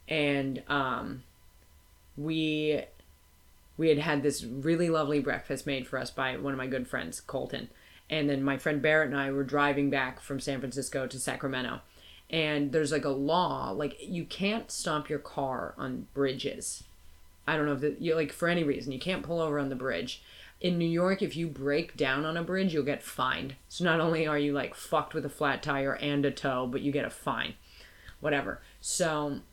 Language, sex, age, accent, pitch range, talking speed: English, female, 30-49, American, 135-160 Hz, 200 wpm